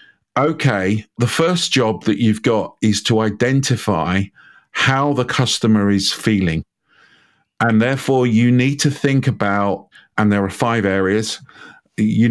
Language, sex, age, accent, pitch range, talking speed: English, male, 50-69, British, 95-115 Hz, 135 wpm